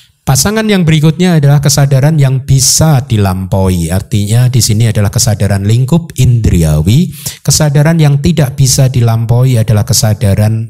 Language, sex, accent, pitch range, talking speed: Indonesian, male, native, 100-135 Hz, 125 wpm